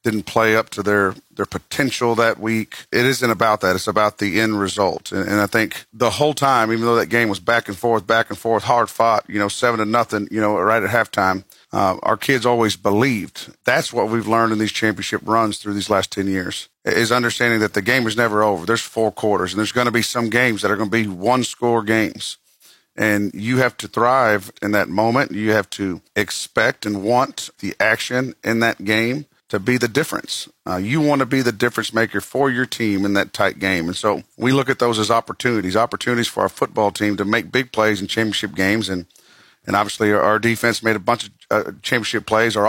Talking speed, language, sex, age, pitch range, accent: 230 wpm, English, male, 40-59, 105-120 Hz, American